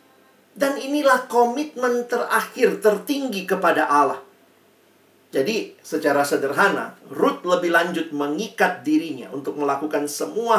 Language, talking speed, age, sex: Indonesian, 100 wpm, 50-69, male